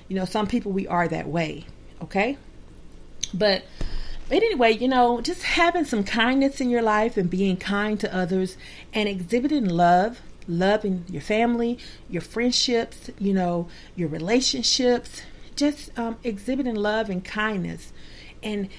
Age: 40-59